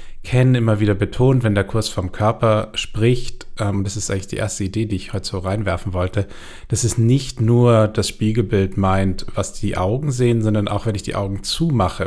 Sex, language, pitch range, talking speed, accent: male, German, 100-115 Hz, 205 wpm, German